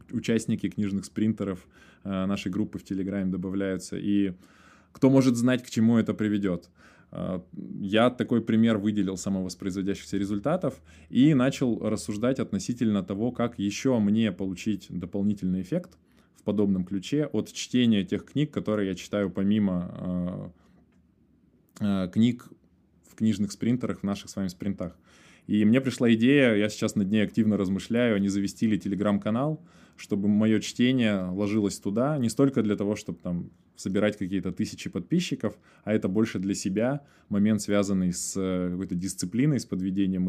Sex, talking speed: male, 140 wpm